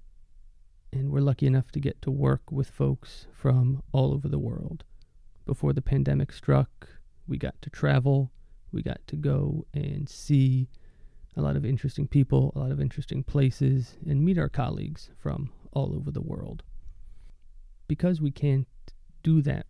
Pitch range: 120-150 Hz